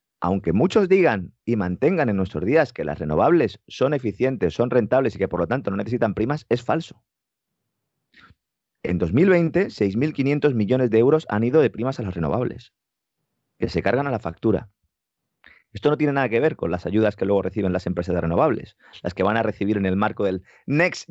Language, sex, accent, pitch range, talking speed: Spanish, male, Spanish, 95-155 Hz, 200 wpm